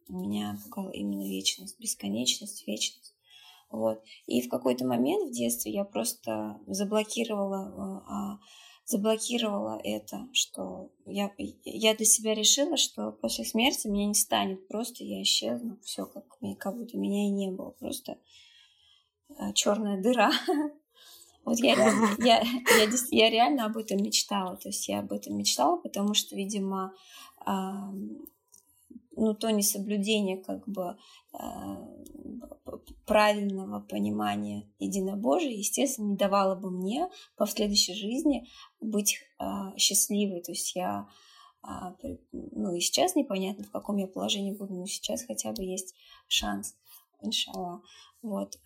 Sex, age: female, 20-39